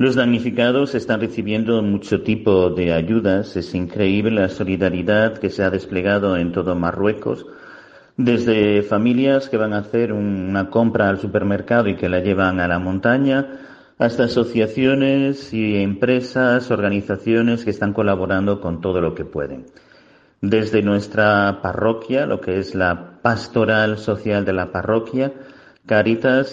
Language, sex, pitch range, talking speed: Spanish, male, 95-115 Hz, 140 wpm